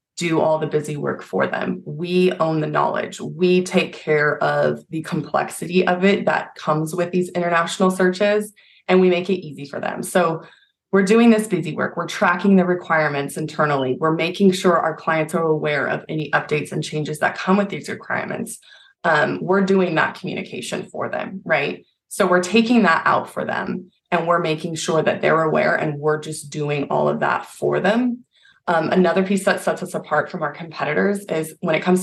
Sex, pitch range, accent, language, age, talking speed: female, 155-190 Hz, American, English, 20-39, 195 wpm